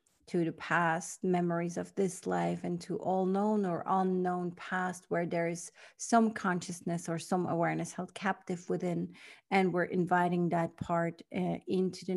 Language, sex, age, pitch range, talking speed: English, female, 40-59, 170-195 Hz, 165 wpm